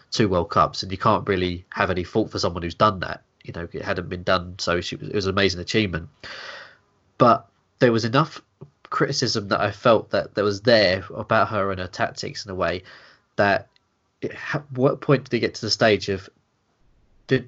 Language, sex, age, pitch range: English, male, 20-39, 95-115 Hz